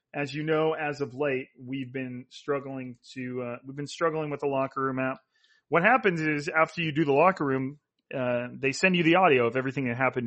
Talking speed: 220 wpm